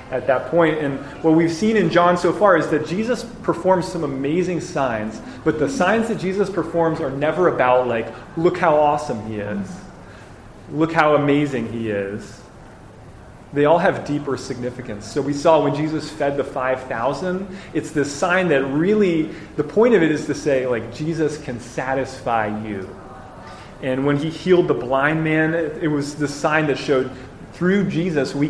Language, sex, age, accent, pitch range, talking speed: English, male, 30-49, American, 125-165 Hz, 175 wpm